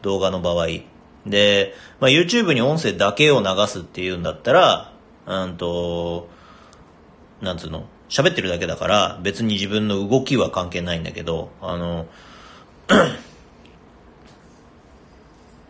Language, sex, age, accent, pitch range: Japanese, male, 40-59, native, 85-145 Hz